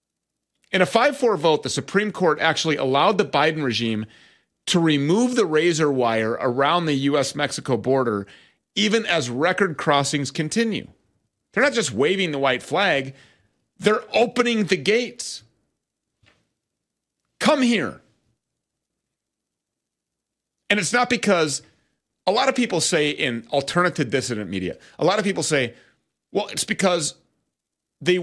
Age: 40-59